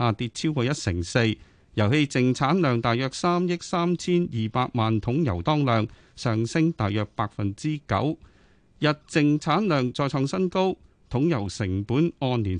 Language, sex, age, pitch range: Chinese, male, 30-49, 110-155 Hz